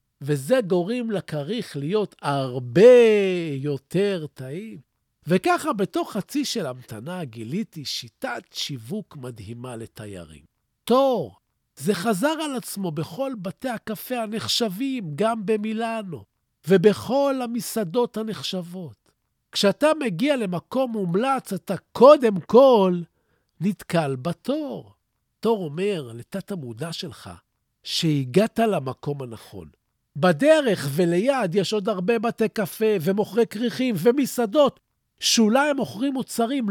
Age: 50-69